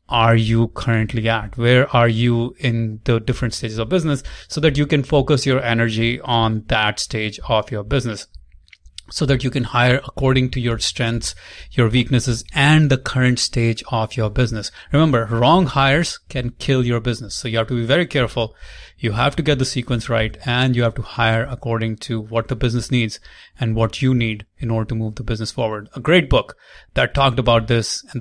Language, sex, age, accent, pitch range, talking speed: English, male, 30-49, Indian, 115-130 Hz, 200 wpm